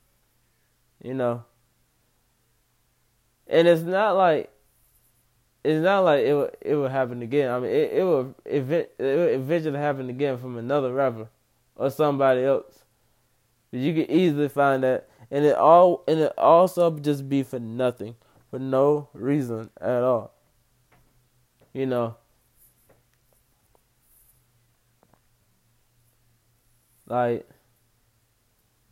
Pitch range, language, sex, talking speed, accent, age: 120-160 Hz, English, male, 110 wpm, American, 20-39